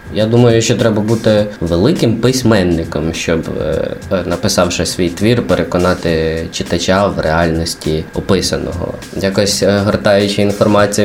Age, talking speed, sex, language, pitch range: 20-39, 105 wpm, male, Ukrainian, 85-100 Hz